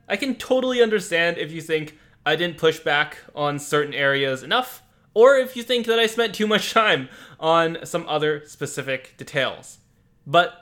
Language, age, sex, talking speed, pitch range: English, 20-39, male, 175 wpm, 135-175 Hz